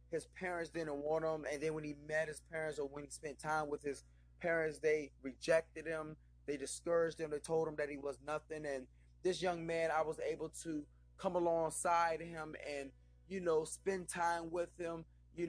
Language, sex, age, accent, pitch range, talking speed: English, male, 20-39, American, 150-170 Hz, 200 wpm